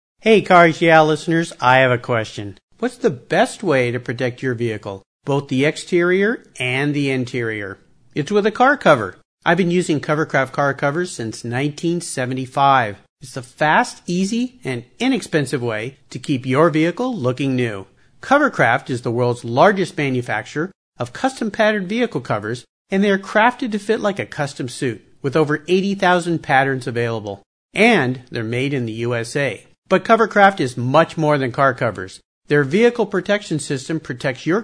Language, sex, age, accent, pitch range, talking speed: English, male, 50-69, American, 125-185 Hz, 160 wpm